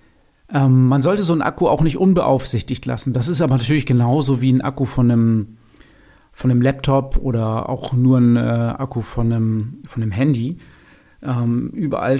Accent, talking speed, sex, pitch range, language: German, 160 wpm, male, 125-145 Hz, German